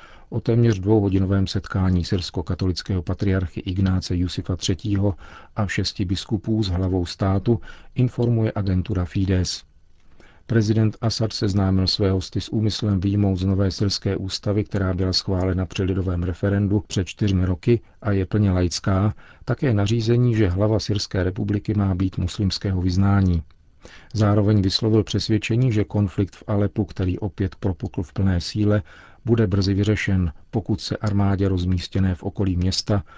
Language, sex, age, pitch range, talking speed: Czech, male, 40-59, 90-105 Hz, 140 wpm